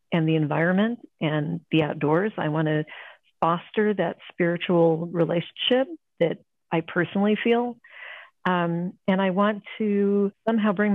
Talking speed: 125 wpm